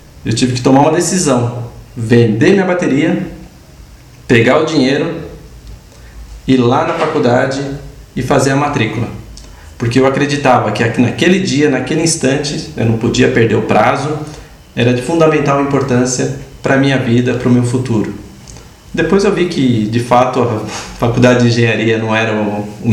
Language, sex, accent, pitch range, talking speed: Portuguese, male, Brazilian, 115-155 Hz, 150 wpm